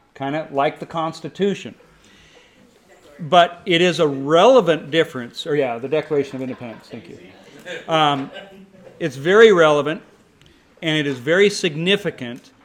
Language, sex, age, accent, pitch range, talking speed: English, male, 40-59, American, 135-175 Hz, 135 wpm